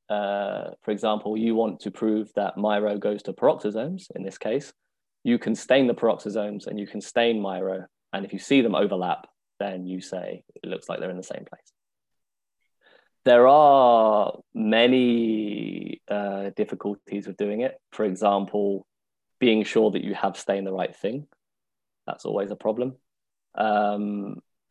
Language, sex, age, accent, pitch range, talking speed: English, male, 20-39, British, 100-120 Hz, 160 wpm